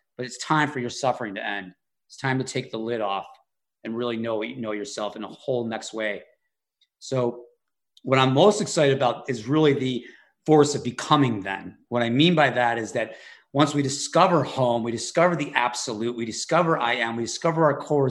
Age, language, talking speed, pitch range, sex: 30-49, English, 210 wpm, 120-155 Hz, male